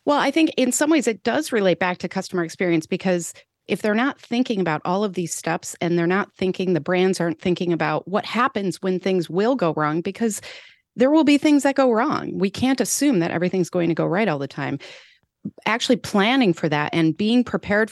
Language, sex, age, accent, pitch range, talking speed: English, female, 30-49, American, 165-220 Hz, 220 wpm